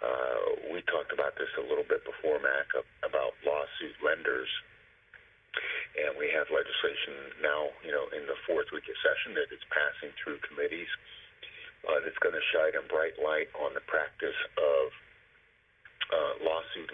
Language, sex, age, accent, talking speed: English, male, 40-59, American, 160 wpm